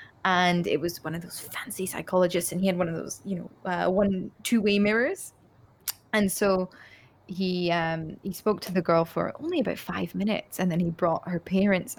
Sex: female